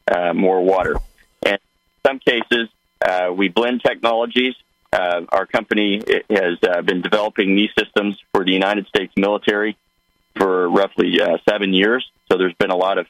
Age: 40-59